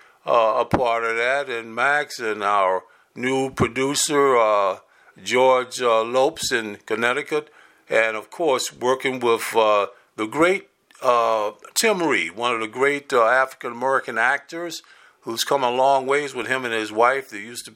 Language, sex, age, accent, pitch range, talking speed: English, male, 50-69, American, 115-150 Hz, 160 wpm